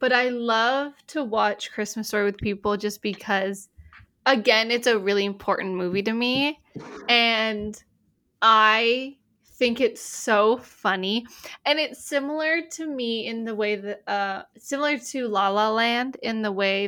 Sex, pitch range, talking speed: female, 210-255 Hz, 155 wpm